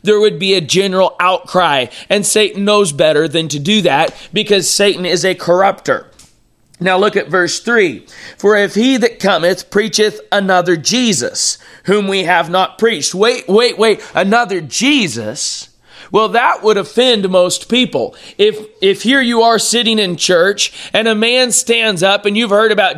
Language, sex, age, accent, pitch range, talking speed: English, male, 30-49, American, 185-220 Hz, 170 wpm